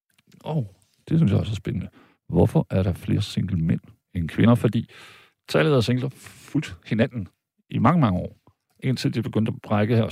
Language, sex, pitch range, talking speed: Danish, male, 100-135 Hz, 190 wpm